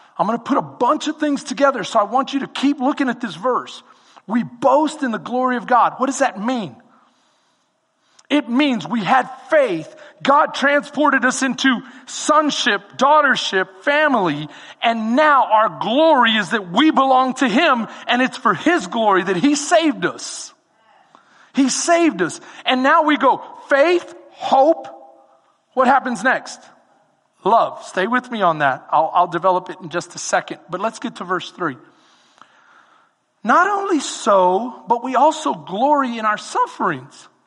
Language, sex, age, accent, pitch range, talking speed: English, male, 40-59, American, 230-310 Hz, 165 wpm